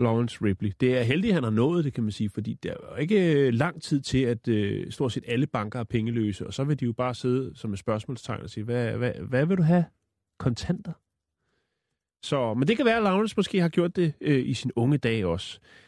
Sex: male